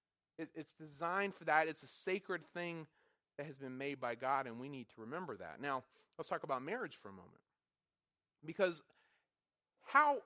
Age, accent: 30-49, American